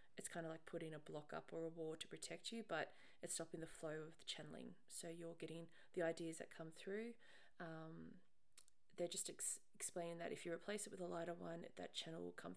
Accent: Australian